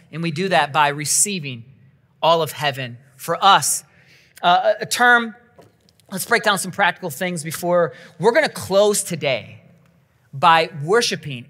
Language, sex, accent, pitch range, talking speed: English, male, American, 140-200 Hz, 140 wpm